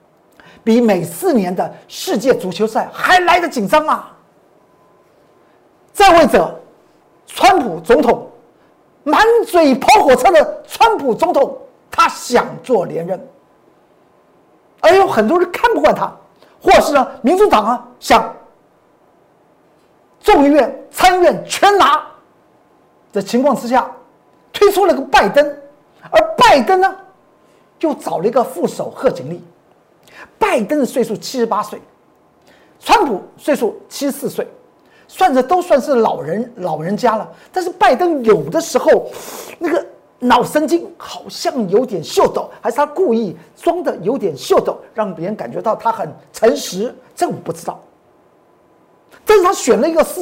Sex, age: male, 50-69